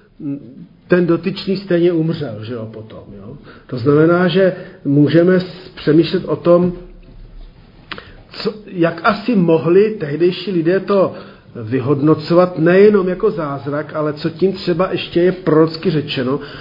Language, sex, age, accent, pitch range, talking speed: Czech, male, 50-69, native, 140-180 Hz, 125 wpm